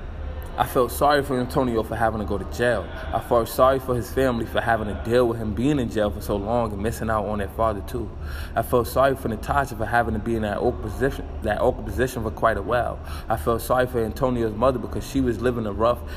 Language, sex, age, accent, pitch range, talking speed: English, male, 20-39, American, 95-125 Hz, 245 wpm